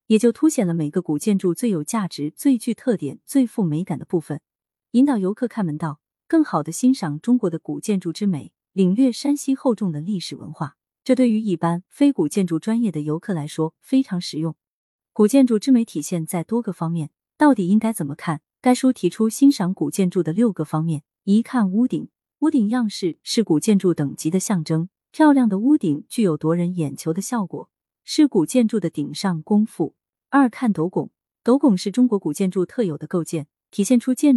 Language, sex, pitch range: Chinese, female, 165-240 Hz